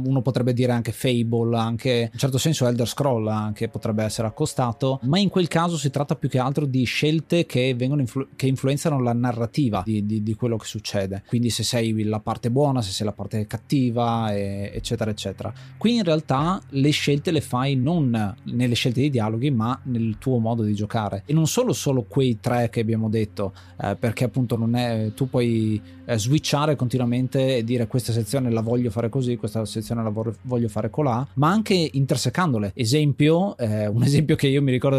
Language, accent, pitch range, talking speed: Italian, native, 115-140 Hz, 195 wpm